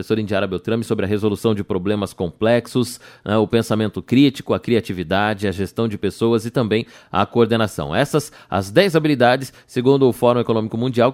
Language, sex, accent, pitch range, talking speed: Portuguese, male, Brazilian, 105-135 Hz, 170 wpm